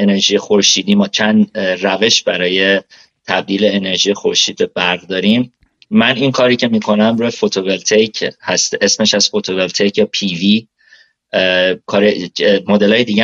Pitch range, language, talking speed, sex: 100-120 Hz, Persian, 125 wpm, male